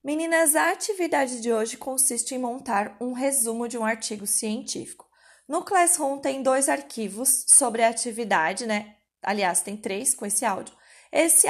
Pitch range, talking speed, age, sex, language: 230-295 Hz, 155 wpm, 20-39, female, Portuguese